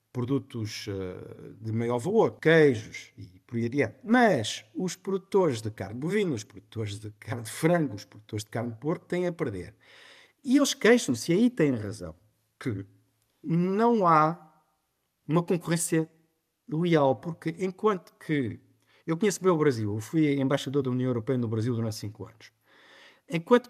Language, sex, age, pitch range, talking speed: Portuguese, male, 50-69, 115-175 Hz, 160 wpm